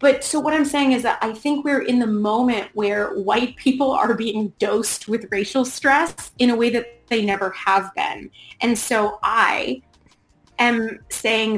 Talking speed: 180 wpm